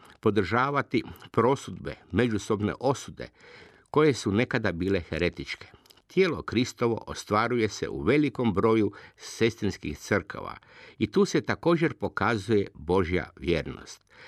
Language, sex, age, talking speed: Croatian, male, 50-69, 105 wpm